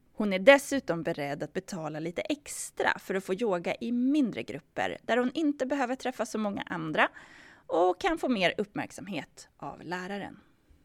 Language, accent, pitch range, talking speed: Swedish, native, 190-290 Hz, 165 wpm